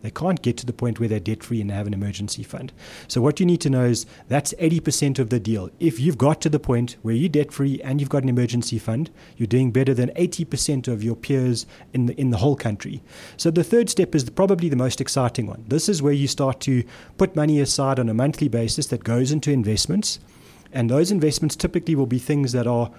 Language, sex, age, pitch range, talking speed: English, male, 30-49, 120-145 Hz, 235 wpm